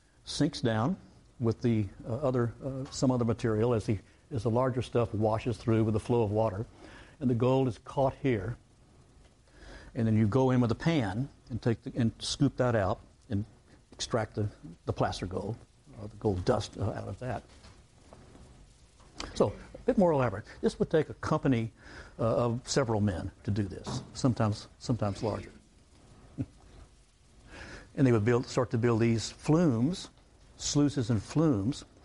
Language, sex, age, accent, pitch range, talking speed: English, male, 60-79, American, 110-130 Hz, 170 wpm